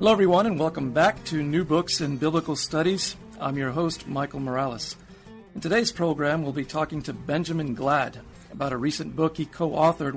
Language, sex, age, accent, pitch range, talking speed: English, male, 50-69, American, 140-170 Hz, 190 wpm